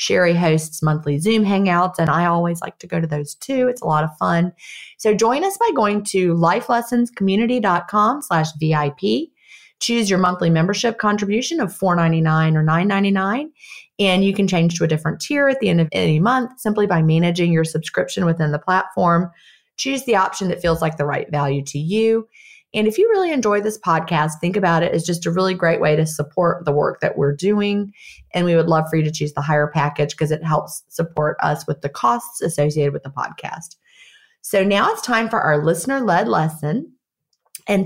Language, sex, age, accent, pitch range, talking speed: English, female, 30-49, American, 160-210 Hz, 200 wpm